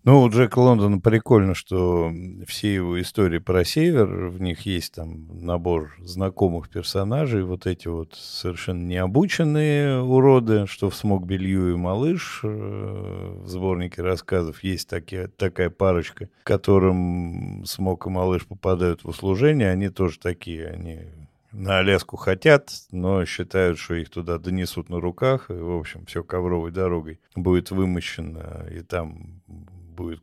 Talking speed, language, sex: 140 wpm, Russian, male